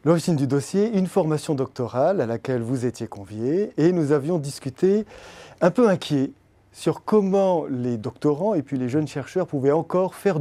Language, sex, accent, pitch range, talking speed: French, male, French, 130-170 Hz, 175 wpm